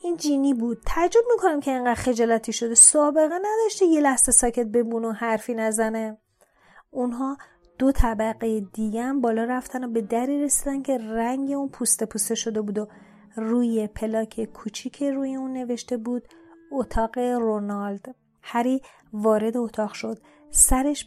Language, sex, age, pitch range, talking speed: Persian, female, 30-49, 225-260 Hz, 145 wpm